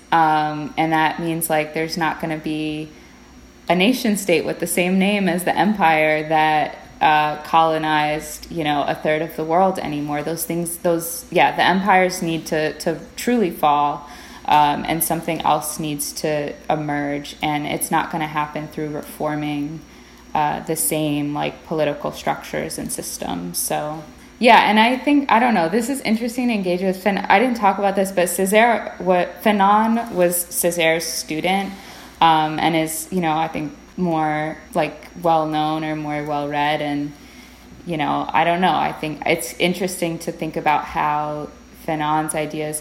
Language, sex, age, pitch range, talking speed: English, female, 20-39, 150-175 Hz, 170 wpm